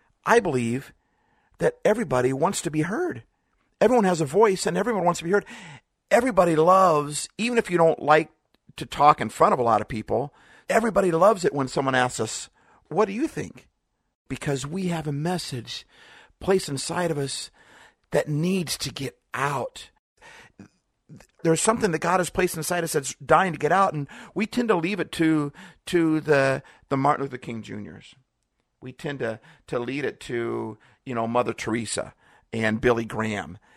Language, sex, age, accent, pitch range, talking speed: English, male, 50-69, American, 120-180 Hz, 180 wpm